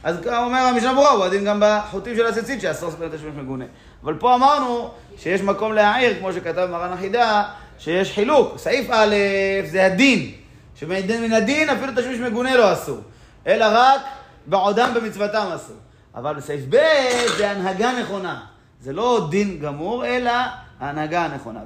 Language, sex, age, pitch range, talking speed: Hebrew, male, 30-49, 135-210 Hz, 150 wpm